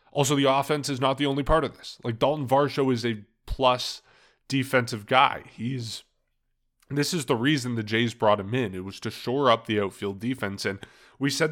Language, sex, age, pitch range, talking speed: English, male, 20-39, 110-155 Hz, 205 wpm